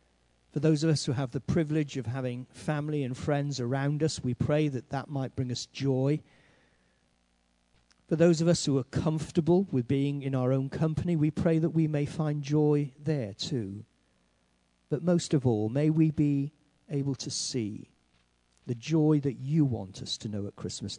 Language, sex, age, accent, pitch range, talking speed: English, male, 50-69, British, 100-145 Hz, 185 wpm